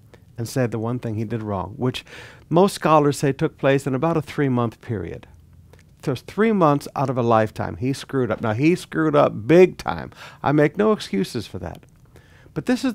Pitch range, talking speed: 110-165 Hz, 205 wpm